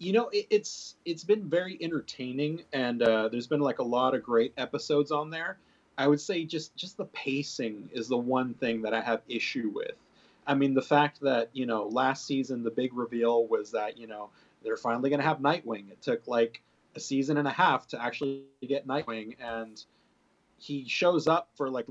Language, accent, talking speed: English, American, 205 wpm